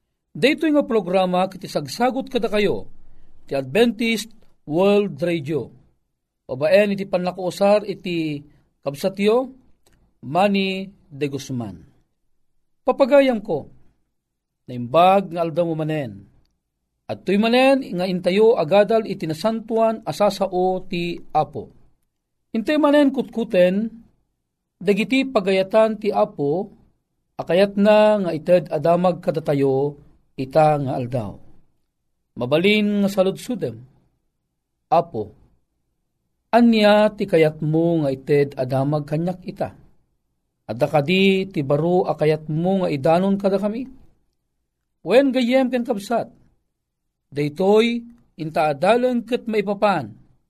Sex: male